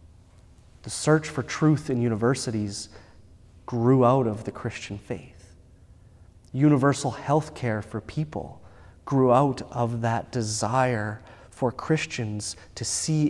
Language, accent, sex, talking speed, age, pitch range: English, American, male, 115 wpm, 30-49, 90-125 Hz